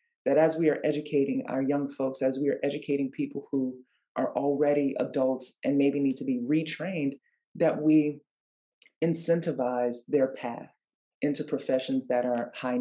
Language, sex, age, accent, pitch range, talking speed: English, female, 20-39, American, 130-165 Hz, 155 wpm